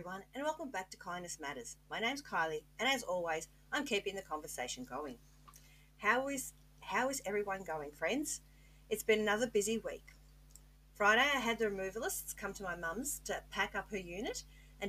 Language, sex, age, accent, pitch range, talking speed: English, female, 40-59, Australian, 160-215 Hz, 180 wpm